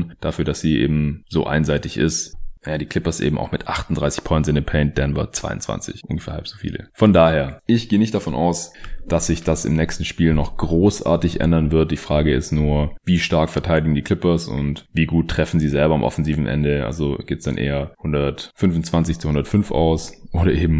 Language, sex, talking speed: German, male, 200 wpm